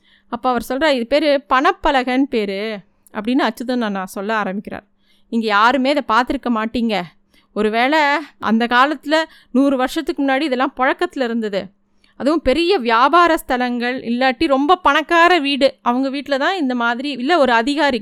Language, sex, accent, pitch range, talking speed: Tamil, female, native, 235-300 Hz, 145 wpm